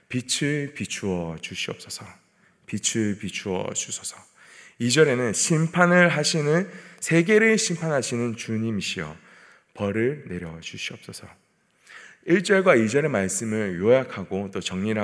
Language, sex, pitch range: Korean, male, 110-175 Hz